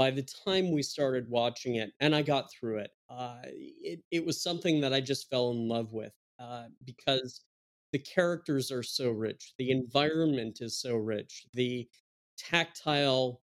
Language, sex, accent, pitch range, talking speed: English, male, American, 120-140 Hz, 170 wpm